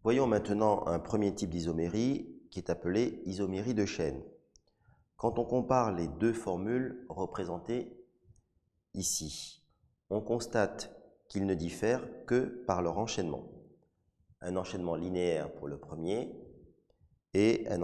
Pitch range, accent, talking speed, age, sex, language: 85-110 Hz, French, 125 wpm, 30-49, male, French